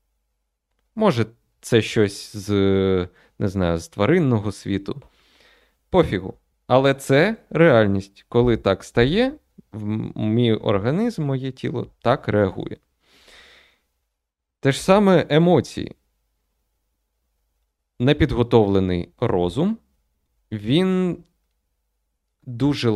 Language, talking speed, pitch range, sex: Ukrainian, 80 wpm, 80-125 Hz, male